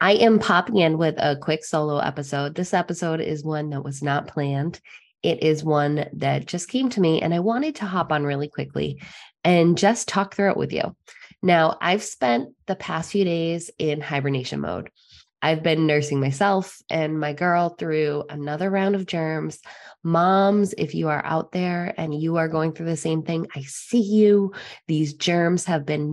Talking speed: 190 wpm